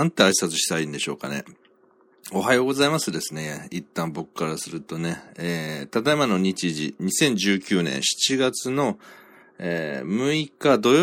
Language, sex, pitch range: Japanese, male, 80-105 Hz